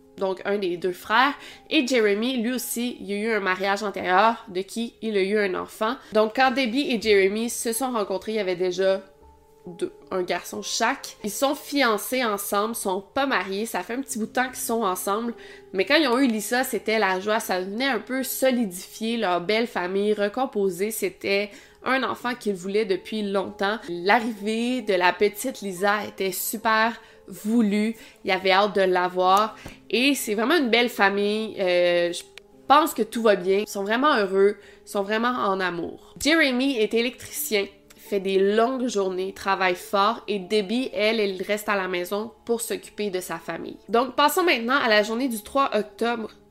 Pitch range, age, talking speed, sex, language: 195-235 Hz, 20-39, 190 wpm, female, French